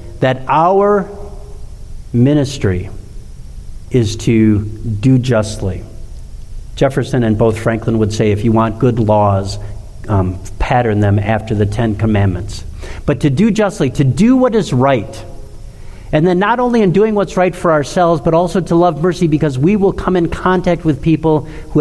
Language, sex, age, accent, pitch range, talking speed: English, male, 50-69, American, 105-160 Hz, 160 wpm